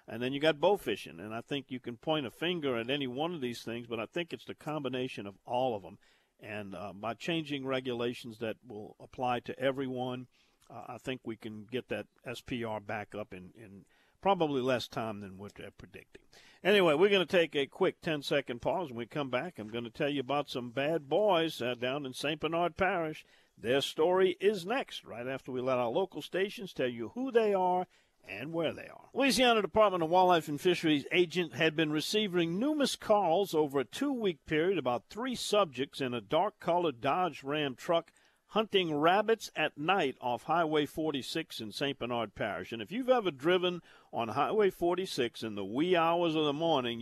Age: 50-69